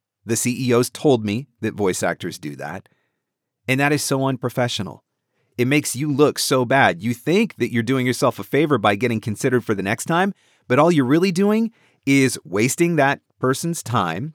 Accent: American